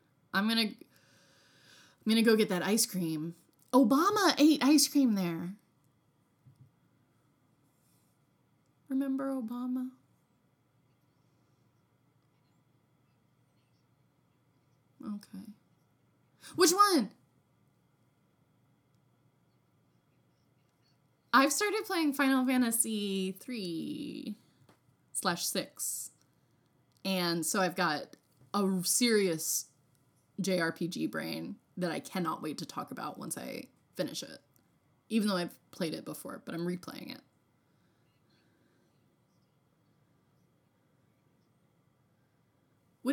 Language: English